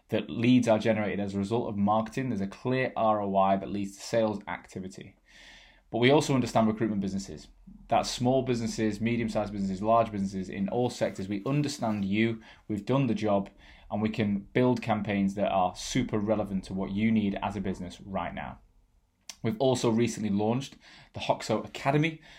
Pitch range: 100-120 Hz